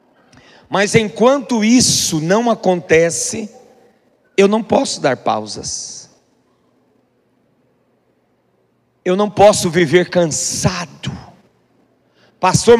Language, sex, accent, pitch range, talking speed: Portuguese, male, Brazilian, 195-285 Hz, 75 wpm